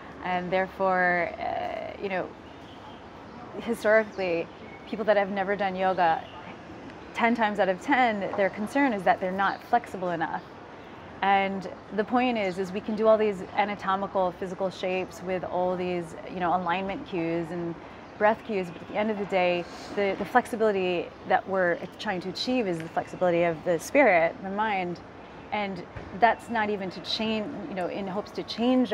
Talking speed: 170 wpm